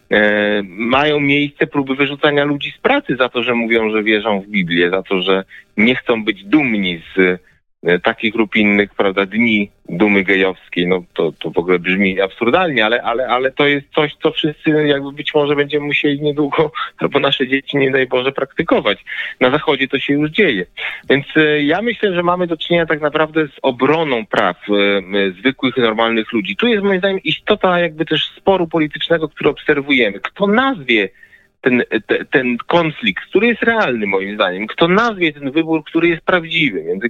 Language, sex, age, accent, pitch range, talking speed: Polish, male, 30-49, native, 120-165 Hz, 175 wpm